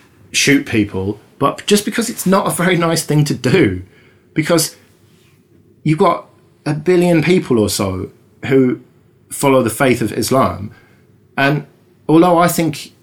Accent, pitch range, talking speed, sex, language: British, 105-145 Hz, 145 wpm, male, English